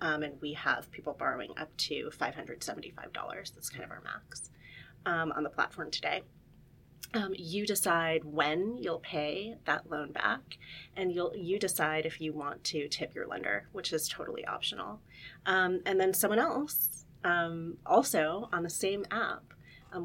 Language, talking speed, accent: English, 170 wpm, American